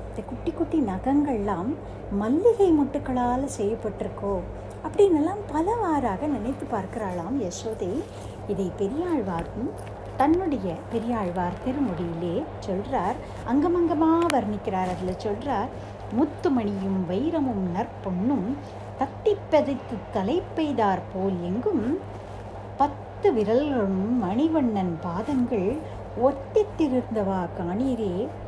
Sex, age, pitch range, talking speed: female, 60-79, 190-300 Hz, 75 wpm